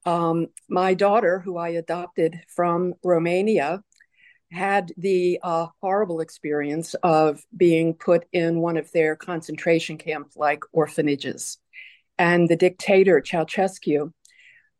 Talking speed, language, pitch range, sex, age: 120 wpm, English, 160-185 Hz, female, 50-69